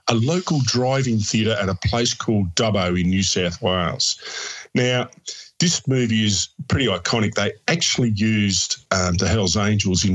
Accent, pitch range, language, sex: Australian, 90-110 Hz, English, male